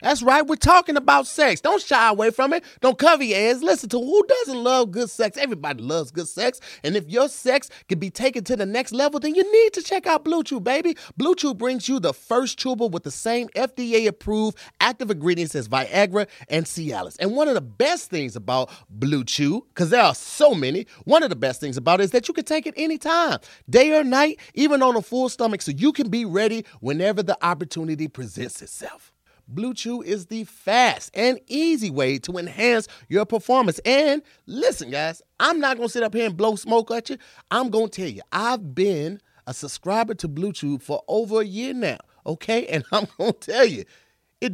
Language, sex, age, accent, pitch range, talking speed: English, male, 30-49, American, 170-265 Hz, 210 wpm